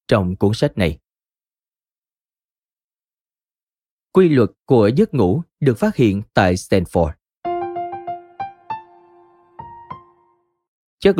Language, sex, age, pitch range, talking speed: Vietnamese, male, 20-39, 105-165 Hz, 80 wpm